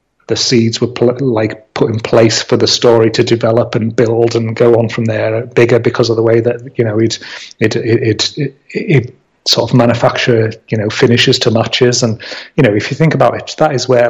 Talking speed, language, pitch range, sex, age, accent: 225 wpm, English, 115-135 Hz, male, 30-49, British